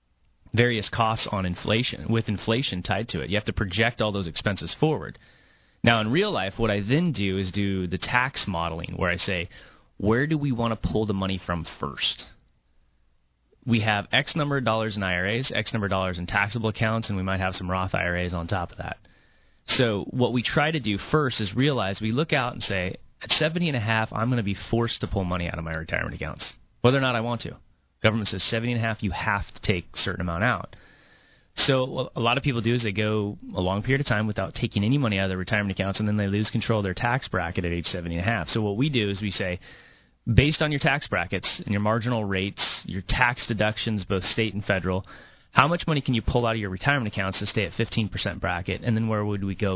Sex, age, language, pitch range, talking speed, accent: male, 30-49, English, 95-115 Hz, 240 wpm, American